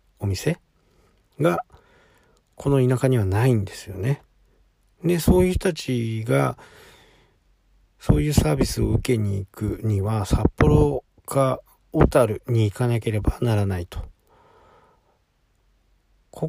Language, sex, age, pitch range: Japanese, male, 40-59, 100-135 Hz